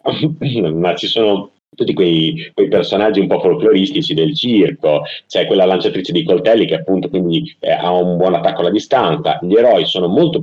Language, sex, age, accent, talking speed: Italian, male, 30-49, native, 180 wpm